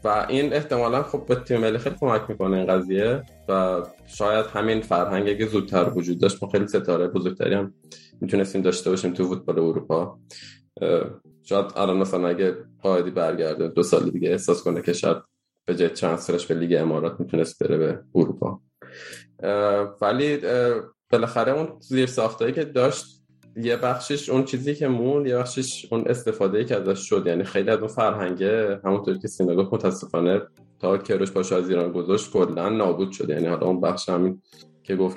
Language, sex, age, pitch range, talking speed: Persian, male, 20-39, 90-110 Hz, 165 wpm